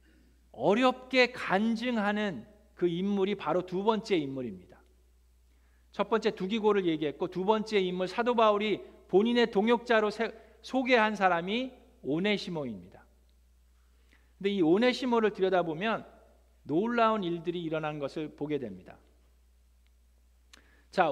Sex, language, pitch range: male, Korean, 150-215 Hz